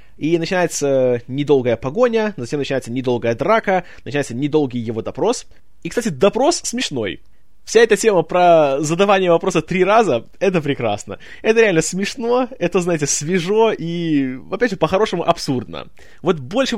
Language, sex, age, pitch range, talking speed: Russian, male, 20-39, 140-205 Hz, 140 wpm